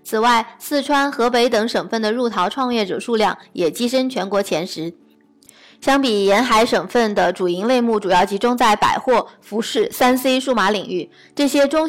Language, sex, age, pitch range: Chinese, female, 20-39, 205-255 Hz